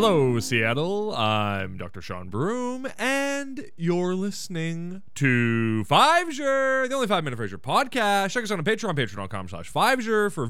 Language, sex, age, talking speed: English, male, 20-39, 145 wpm